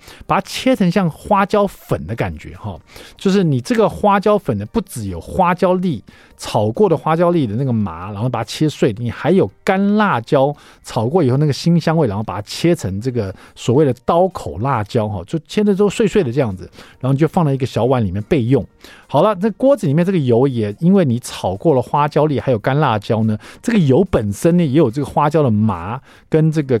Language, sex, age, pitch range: Chinese, male, 50-69, 115-185 Hz